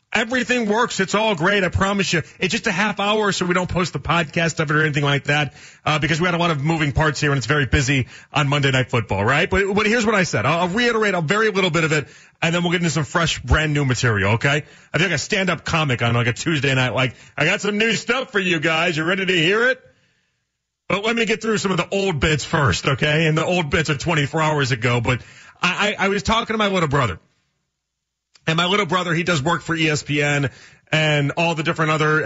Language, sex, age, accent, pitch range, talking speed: English, male, 40-59, American, 145-195 Hz, 255 wpm